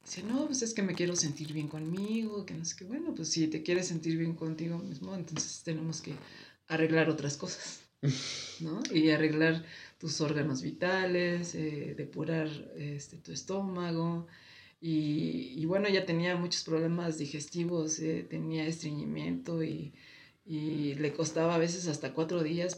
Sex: female